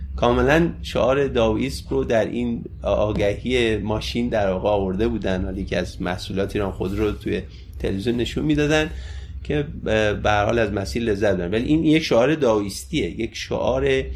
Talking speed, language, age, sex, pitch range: 150 wpm, Persian, 30-49, male, 100-155 Hz